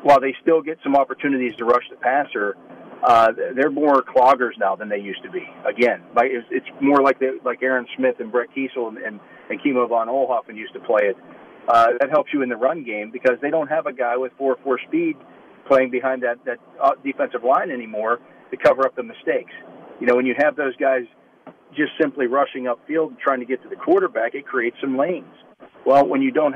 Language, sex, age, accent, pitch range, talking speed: English, male, 40-59, American, 120-145 Hz, 225 wpm